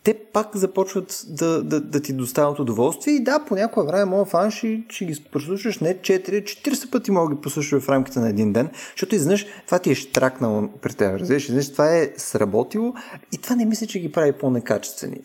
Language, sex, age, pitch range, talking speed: Bulgarian, male, 30-49, 130-190 Hz, 205 wpm